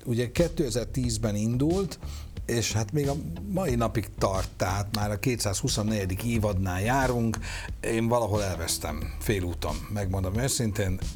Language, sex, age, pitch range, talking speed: Hungarian, male, 60-79, 90-115 Hz, 120 wpm